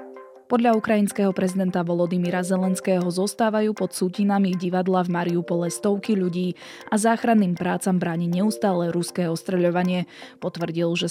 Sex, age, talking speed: female, 20-39, 120 wpm